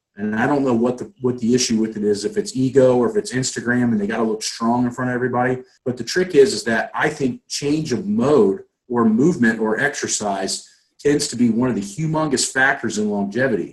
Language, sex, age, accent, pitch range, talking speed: English, male, 40-59, American, 110-145 Hz, 230 wpm